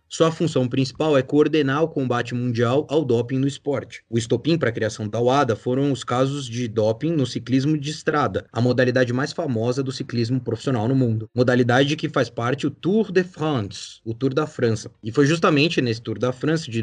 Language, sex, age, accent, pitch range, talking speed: Portuguese, male, 20-39, Brazilian, 120-155 Hz, 205 wpm